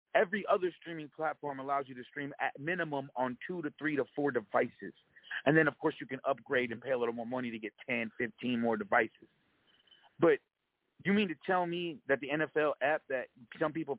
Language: English